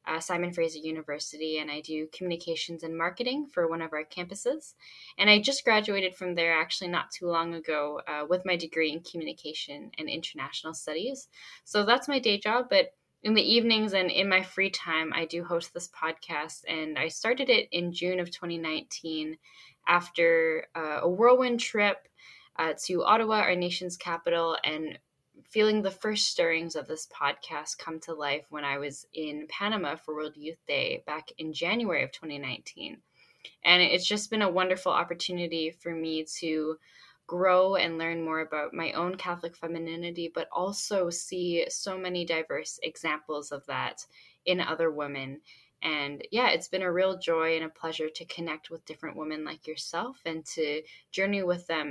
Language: English